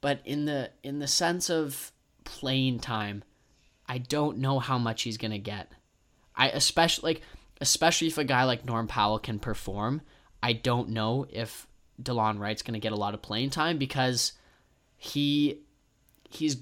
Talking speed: 170 wpm